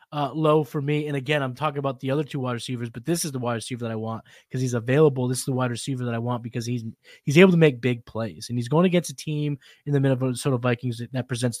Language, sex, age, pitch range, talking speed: English, male, 20-39, 130-175 Hz, 280 wpm